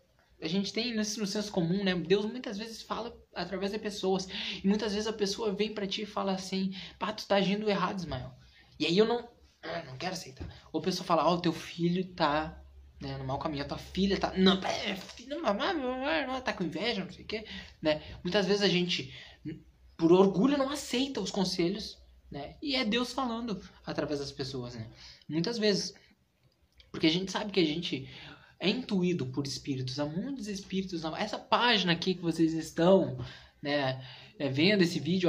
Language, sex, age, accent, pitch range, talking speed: Portuguese, male, 20-39, Brazilian, 170-220 Hz, 185 wpm